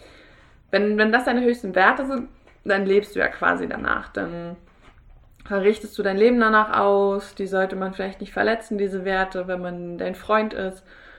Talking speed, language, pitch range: 175 wpm, German, 180-215 Hz